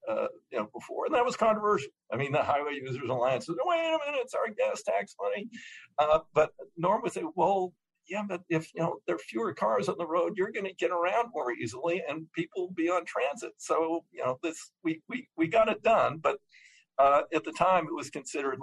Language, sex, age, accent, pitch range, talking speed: English, male, 60-79, American, 130-210 Hz, 230 wpm